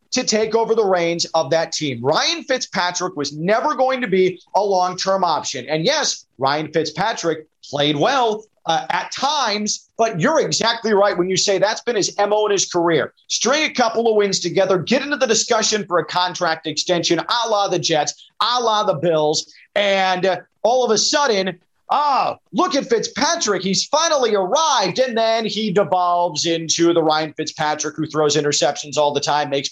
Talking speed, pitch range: 185 wpm, 165-220 Hz